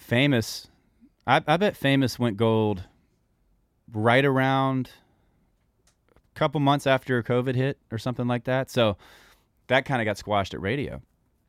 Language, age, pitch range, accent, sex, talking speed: English, 20-39, 95-125 Hz, American, male, 140 wpm